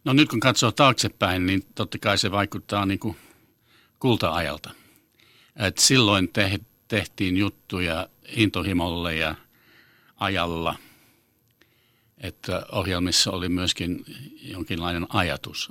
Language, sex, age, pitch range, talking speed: Finnish, male, 60-79, 85-115 Hz, 95 wpm